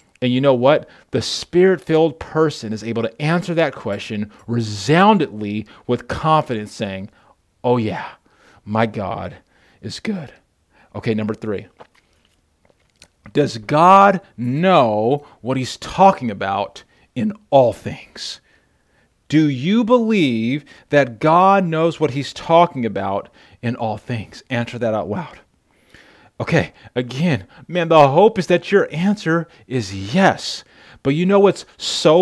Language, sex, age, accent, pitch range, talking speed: English, male, 40-59, American, 120-195 Hz, 130 wpm